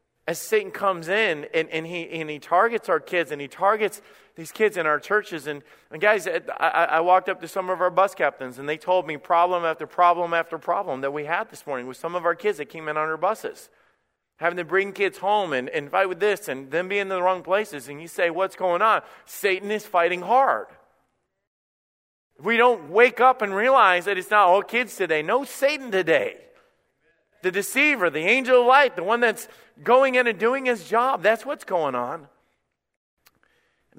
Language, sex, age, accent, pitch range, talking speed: English, male, 40-59, American, 140-205 Hz, 210 wpm